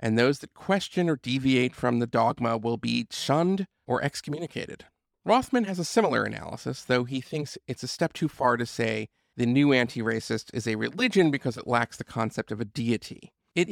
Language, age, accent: English, 40-59, American